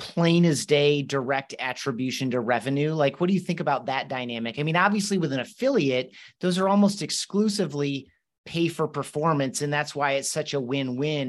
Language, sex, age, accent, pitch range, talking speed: English, male, 30-49, American, 130-155 Hz, 185 wpm